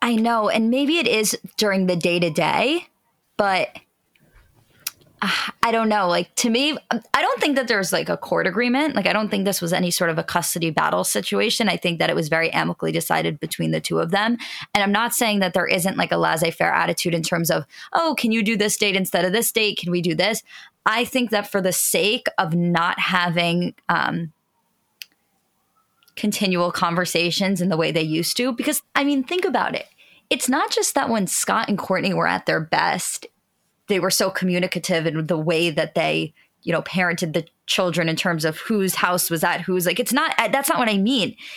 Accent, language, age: American, English, 20-39